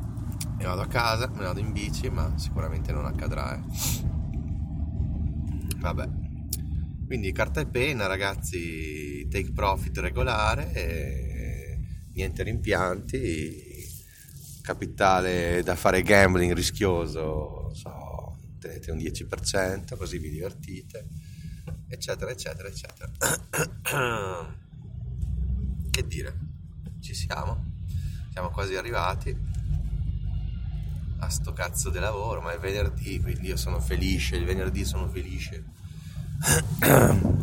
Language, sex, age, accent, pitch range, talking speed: Italian, male, 30-49, native, 80-95 Hz, 100 wpm